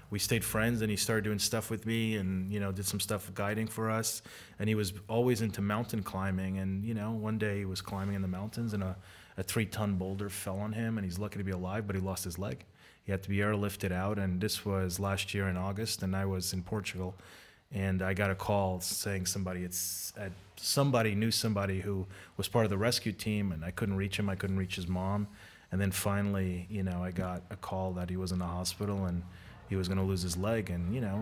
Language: Dutch